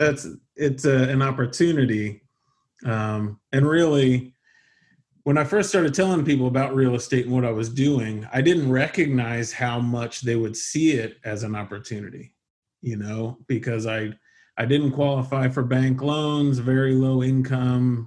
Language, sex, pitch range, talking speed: English, male, 120-140 Hz, 155 wpm